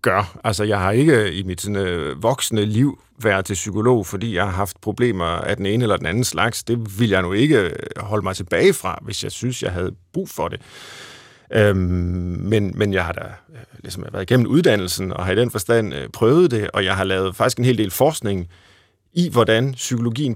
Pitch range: 95-125 Hz